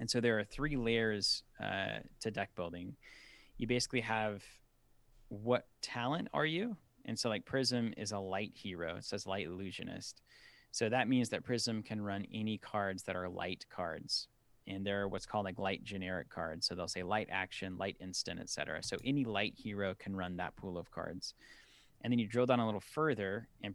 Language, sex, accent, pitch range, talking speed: English, male, American, 95-120 Hz, 195 wpm